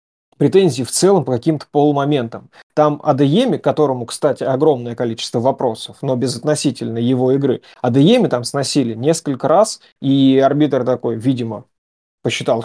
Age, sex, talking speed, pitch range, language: 30-49, male, 130 wpm, 125-155 Hz, Russian